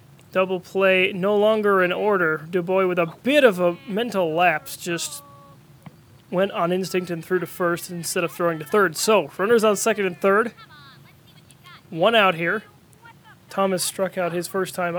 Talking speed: 170 wpm